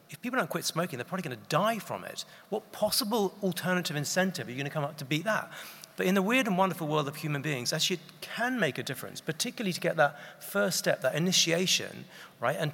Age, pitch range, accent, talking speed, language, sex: 40-59, 140-180 Hz, British, 240 wpm, English, male